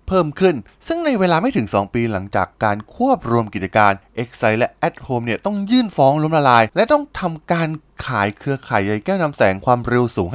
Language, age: Thai, 20-39